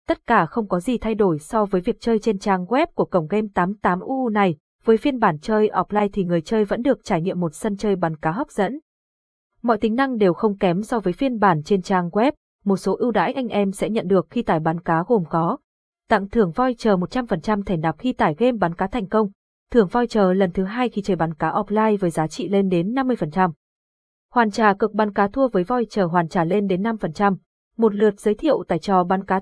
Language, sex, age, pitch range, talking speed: Vietnamese, female, 20-39, 180-230 Hz, 245 wpm